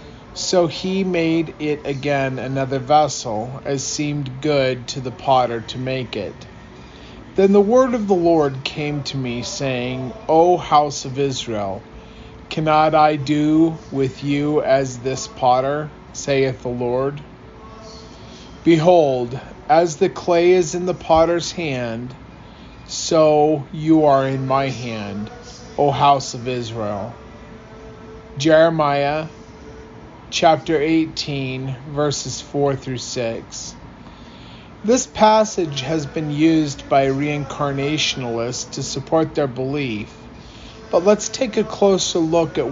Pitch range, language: 130-160 Hz, English